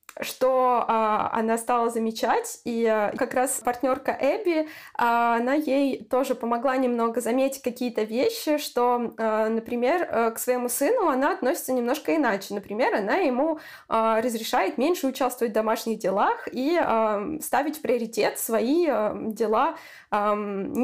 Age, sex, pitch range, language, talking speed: 20-39, female, 210-265 Hz, Russian, 145 wpm